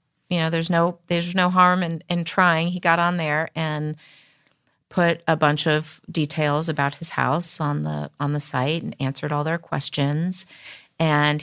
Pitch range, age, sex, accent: 145-180 Hz, 30-49, female, American